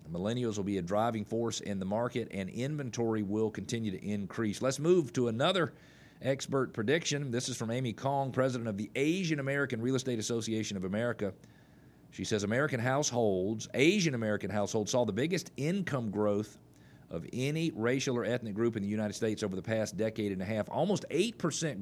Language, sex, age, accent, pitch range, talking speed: English, male, 40-59, American, 105-130 Hz, 185 wpm